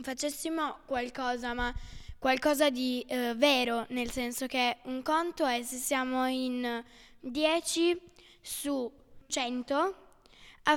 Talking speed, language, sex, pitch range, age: 110 wpm, Italian, female, 245-290 Hz, 10-29